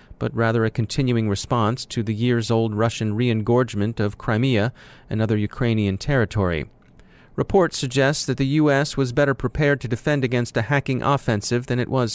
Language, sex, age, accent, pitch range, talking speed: English, male, 30-49, American, 110-140 Hz, 165 wpm